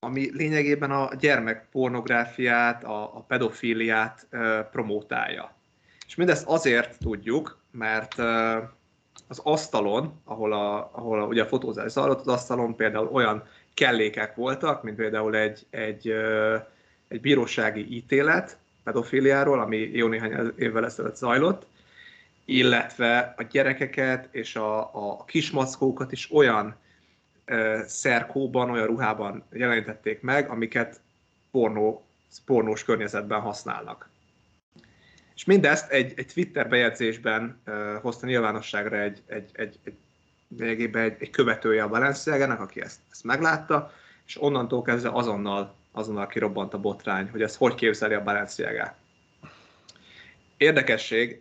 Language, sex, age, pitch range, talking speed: Hungarian, male, 30-49, 110-125 Hz, 115 wpm